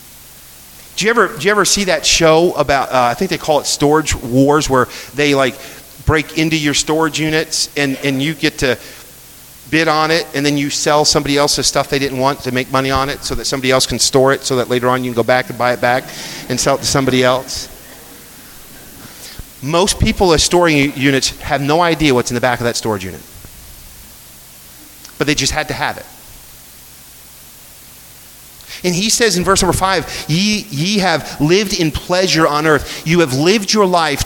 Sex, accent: male, American